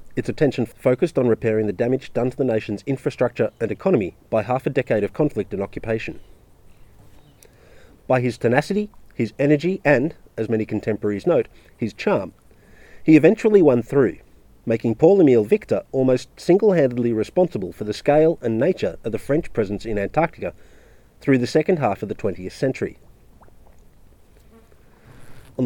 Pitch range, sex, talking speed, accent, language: 105-145 Hz, male, 150 wpm, Australian, English